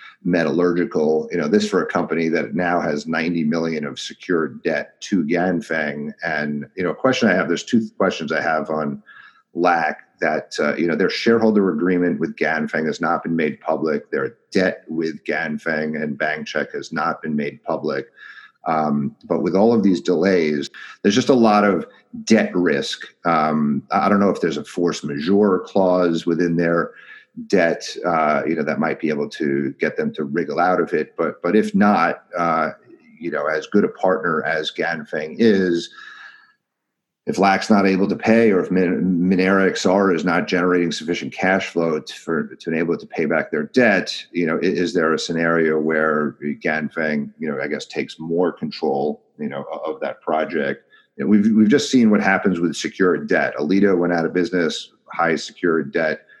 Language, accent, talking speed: English, American, 195 wpm